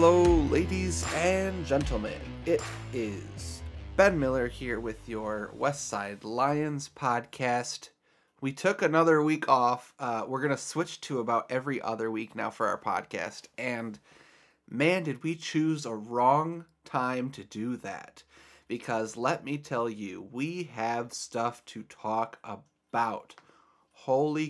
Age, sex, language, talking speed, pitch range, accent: 30-49, male, English, 140 wpm, 115-150 Hz, American